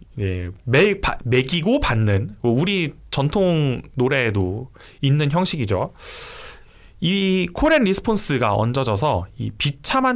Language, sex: Korean, male